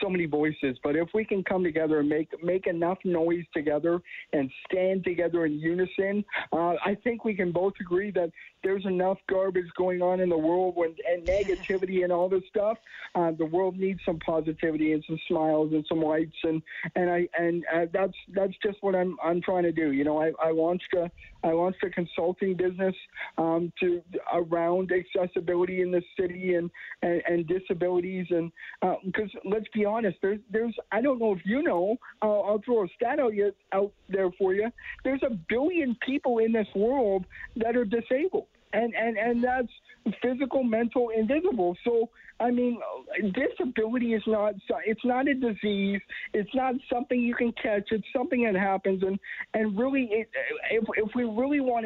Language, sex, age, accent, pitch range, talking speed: English, male, 50-69, American, 180-230 Hz, 185 wpm